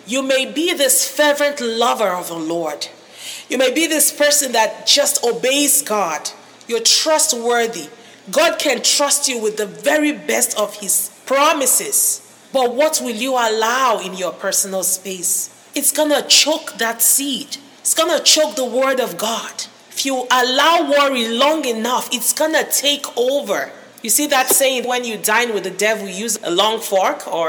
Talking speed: 175 wpm